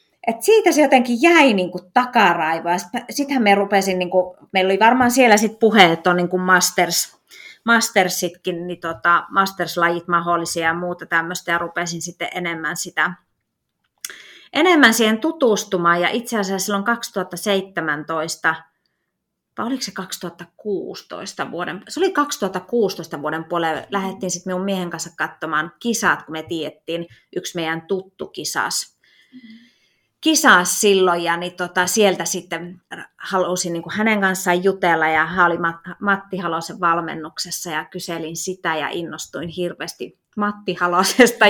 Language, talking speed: Finnish, 125 wpm